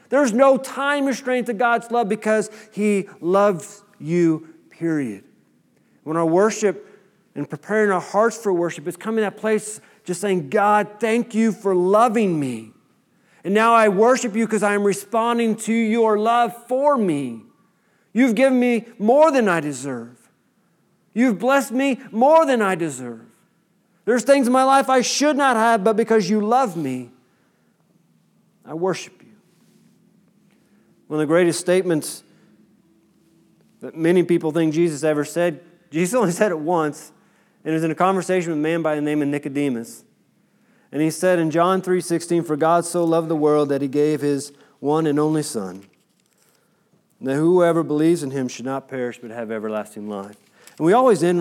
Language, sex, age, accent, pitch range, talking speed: English, male, 40-59, American, 155-215 Hz, 170 wpm